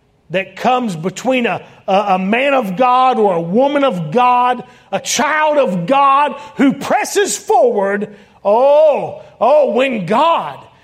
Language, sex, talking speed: English, male, 140 wpm